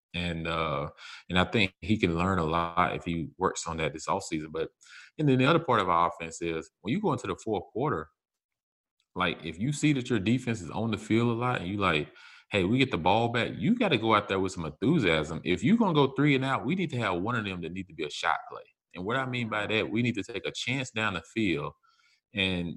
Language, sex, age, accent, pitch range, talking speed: English, male, 30-49, American, 95-130 Hz, 275 wpm